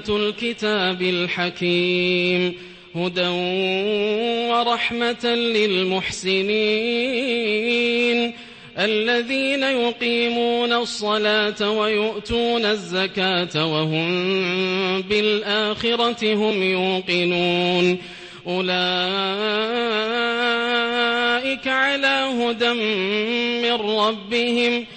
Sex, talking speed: male, 45 wpm